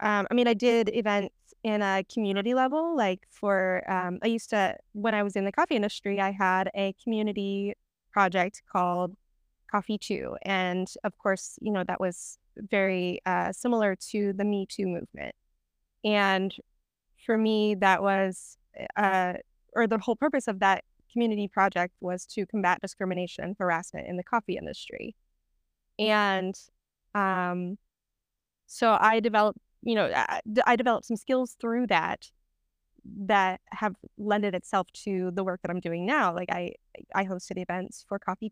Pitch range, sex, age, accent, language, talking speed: 185-220 Hz, female, 20-39, American, English, 155 wpm